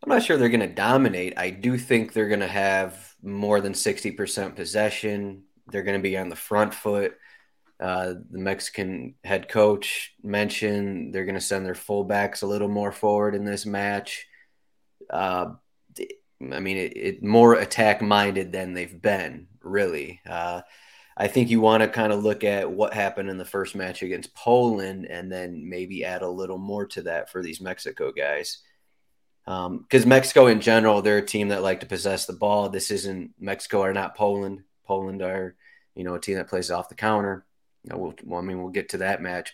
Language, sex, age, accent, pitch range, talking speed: English, male, 30-49, American, 95-105 Hz, 195 wpm